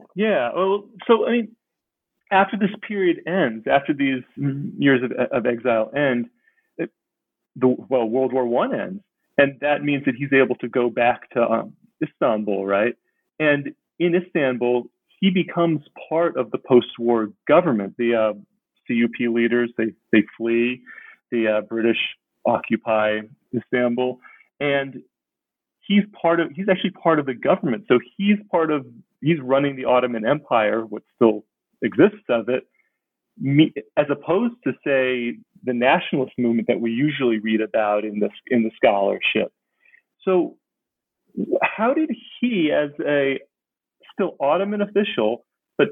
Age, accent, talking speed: 40-59, American, 140 wpm